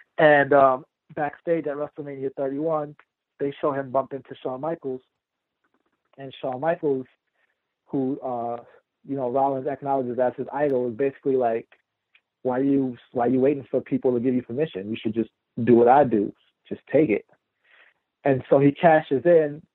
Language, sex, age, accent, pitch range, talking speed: English, male, 40-59, American, 130-150 Hz, 175 wpm